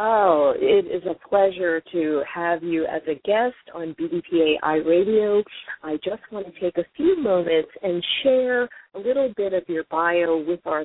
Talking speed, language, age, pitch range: 175 wpm, English, 40-59, 160-220 Hz